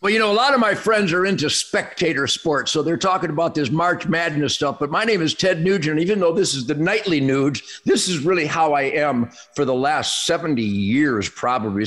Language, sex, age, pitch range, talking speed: English, male, 50-69, 125-185 Hz, 235 wpm